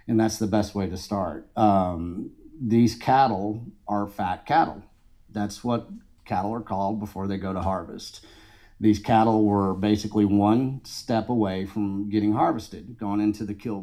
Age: 40-59